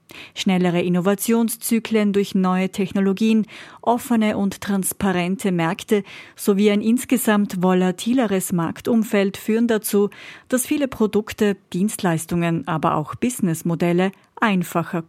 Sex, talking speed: female, 95 wpm